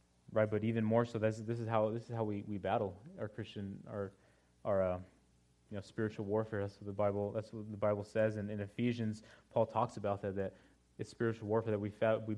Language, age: English, 20-39